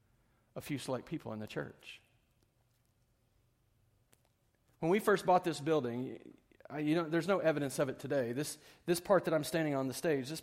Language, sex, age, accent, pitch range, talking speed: English, male, 40-59, American, 130-180 Hz, 185 wpm